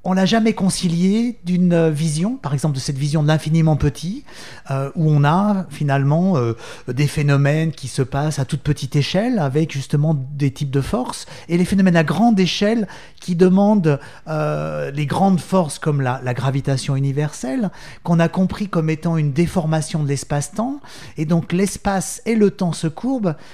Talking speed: 175 wpm